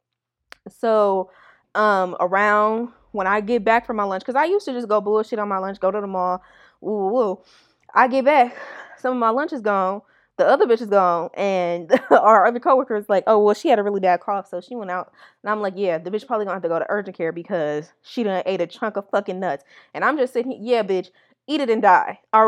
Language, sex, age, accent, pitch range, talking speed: English, female, 20-39, American, 190-245 Hz, 245 wpm